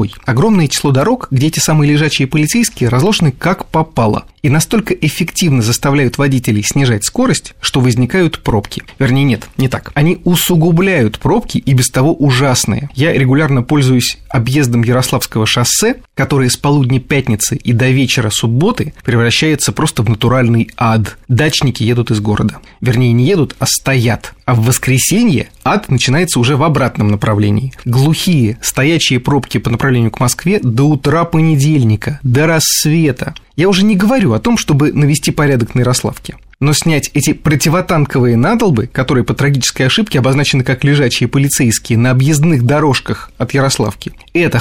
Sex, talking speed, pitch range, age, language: male, 150 wpm, 120-150 Hz, 30-49, Russian